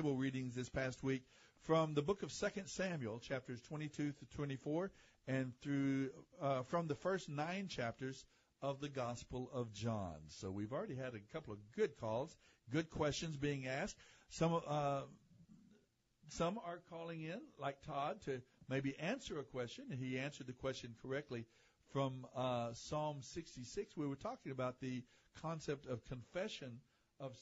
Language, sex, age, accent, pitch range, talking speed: English, male, 60-79, American, 125-150 Hz, 160 wpm